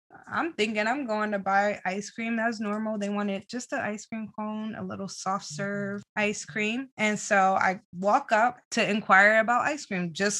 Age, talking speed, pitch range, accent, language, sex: 20-39, 195 wpm, 190-230 Hz, American, English, female